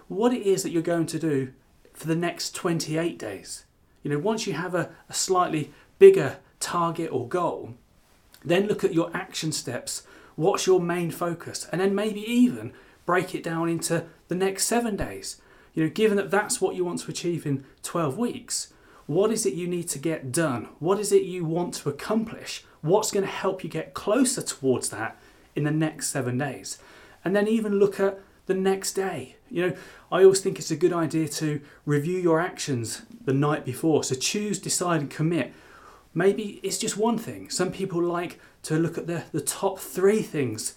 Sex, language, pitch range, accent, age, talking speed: male, English, 145-195 Hz, British, 30-49, 195 wpm